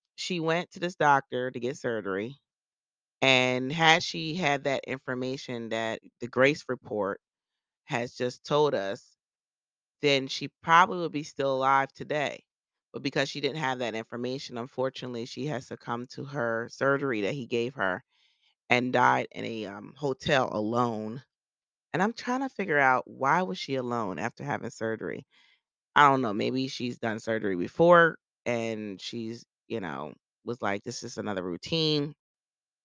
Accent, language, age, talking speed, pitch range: American, English, 30-49, 155 wpm, 115-140 Hz